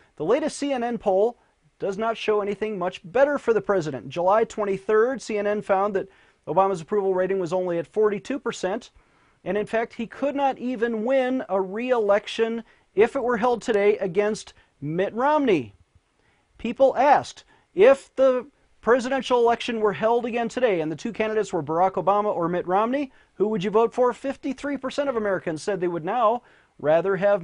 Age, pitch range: 40-59, 190-240 Hz